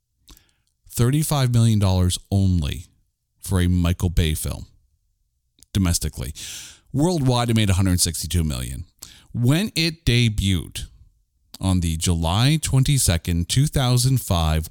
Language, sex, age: English, male, 40-59